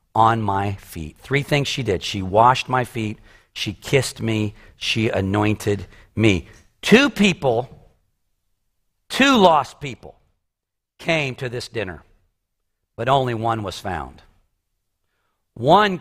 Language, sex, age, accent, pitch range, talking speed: English, male, 50-69, American, 95-140 Hz, 120 wpm